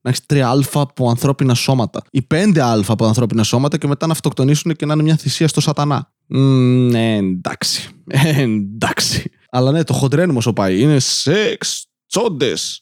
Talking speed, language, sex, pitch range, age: 165 wpm, Greek, male, 120-150 Hz, 20-39